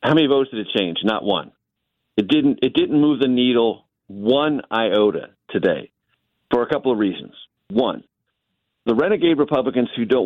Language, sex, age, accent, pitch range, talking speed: English, male, 50-69, American, 105-130 Hz, 170 wpm